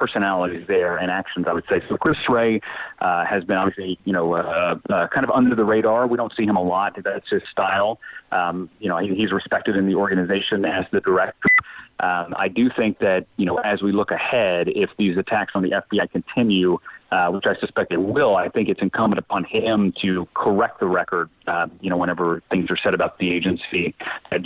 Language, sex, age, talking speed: English, male, 30-49, 220 wpm